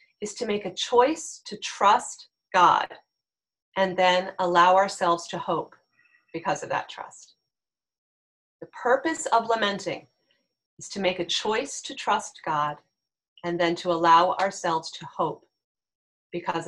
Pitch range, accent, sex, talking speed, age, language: 175-240 Hz, American, female, 135 wpm, 30-49, English